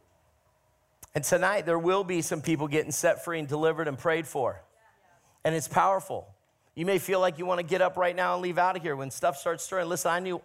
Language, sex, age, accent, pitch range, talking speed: English, male, 40-59, American, 140-175 Hz, 230 wpm